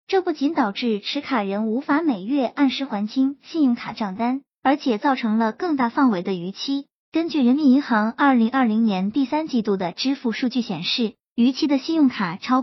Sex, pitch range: male, 220-280 Hz